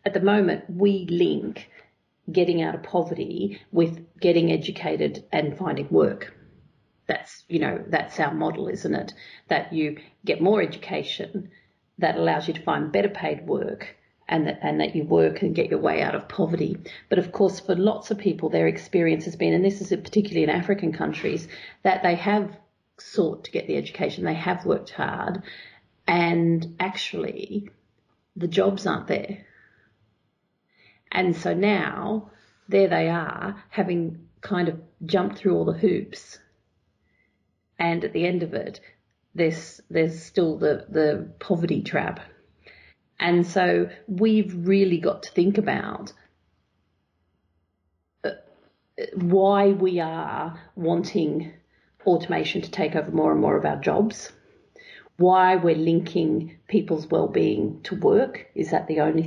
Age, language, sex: 40-59, English, female